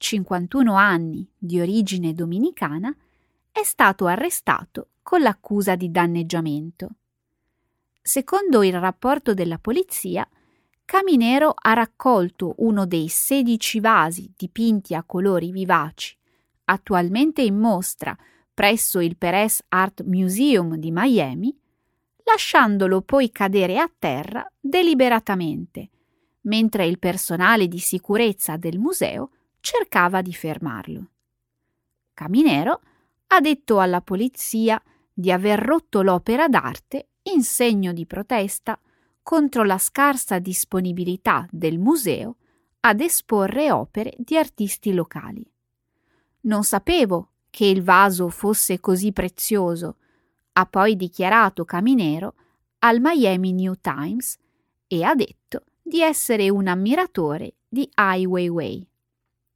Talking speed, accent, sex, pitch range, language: 105 wpm, native, female, 180-250 Hz, Italian